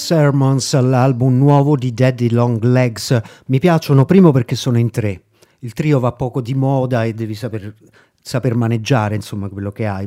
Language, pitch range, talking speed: Italian, 115-145 Hz, 175 wpm